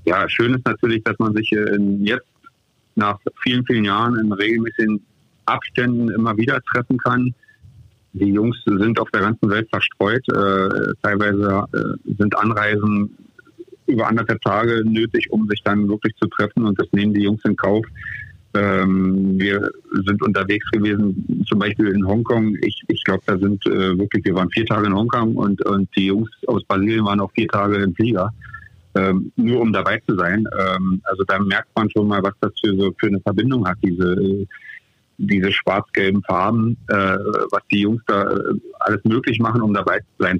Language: German